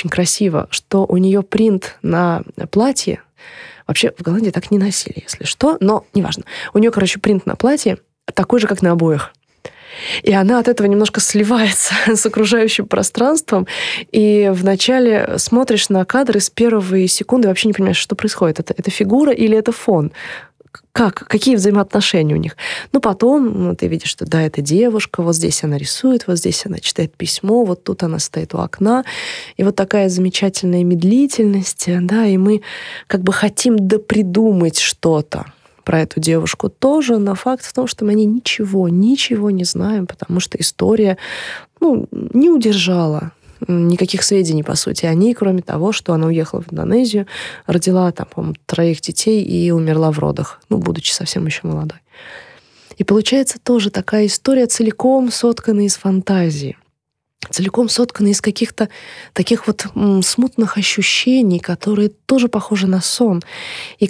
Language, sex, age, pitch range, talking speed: Russian, female, 20-39, 180-225 Hz, 155 wpm